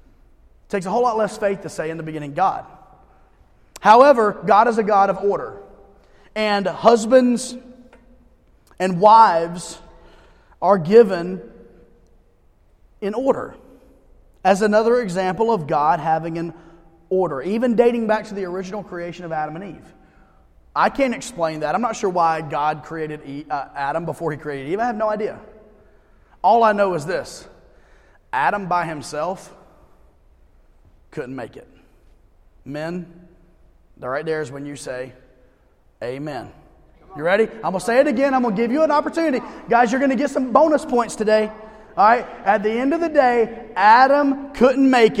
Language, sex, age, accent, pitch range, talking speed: English, male, 30-49, American, 165-245 Hz, 160 wpm